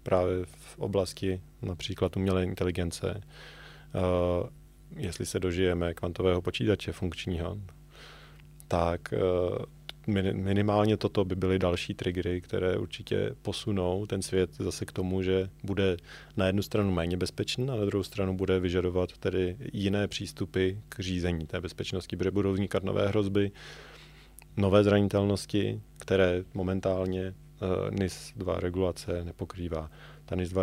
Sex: male